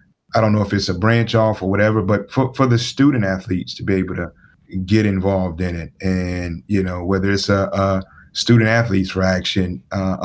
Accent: American